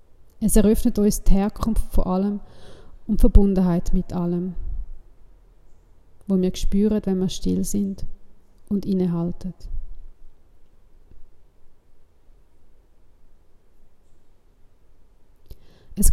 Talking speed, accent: 80 wpm, Swiss